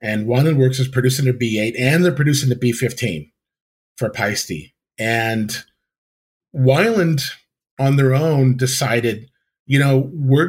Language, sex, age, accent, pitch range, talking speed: English, male, 40-59, American, 115-140 Hz, 130 wpm